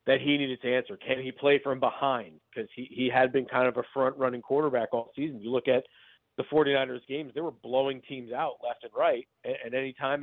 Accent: American